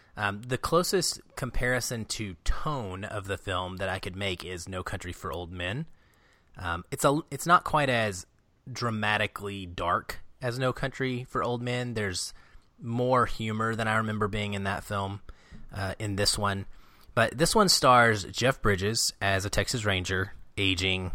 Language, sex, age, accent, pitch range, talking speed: English, male, 30-49, American, 90-115 Hz, 165 wpm